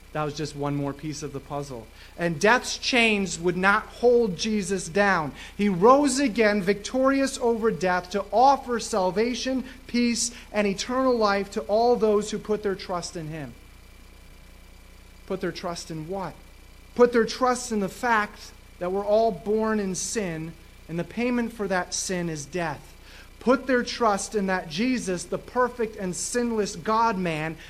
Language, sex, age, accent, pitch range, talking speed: English, male, 30-49, American, 170-225 Hz, 160 wpm